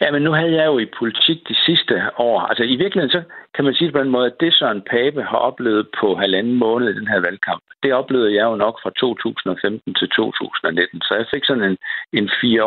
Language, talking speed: Danish, 235 wpm